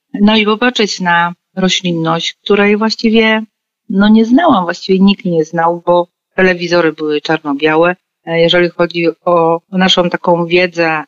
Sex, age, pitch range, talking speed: female, 40-59, 160-195 Hz, 130 wpm